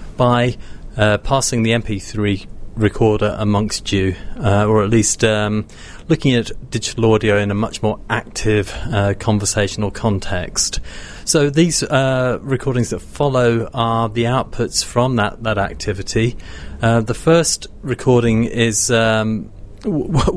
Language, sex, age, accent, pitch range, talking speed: English, male, 30-49, British, 100-115 Hz, 135 wpm